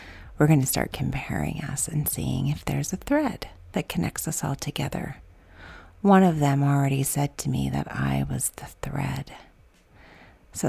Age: 40-59